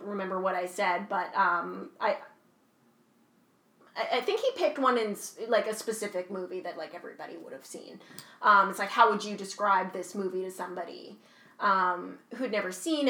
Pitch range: 200-255 Hz